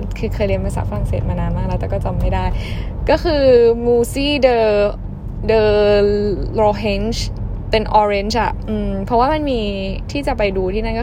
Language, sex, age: Thai, female, 10-29